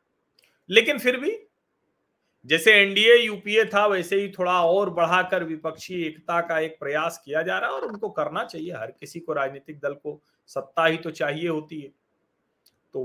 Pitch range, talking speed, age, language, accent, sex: 150-195 Hz, 175 wpm, 40-59, Hindi, native, male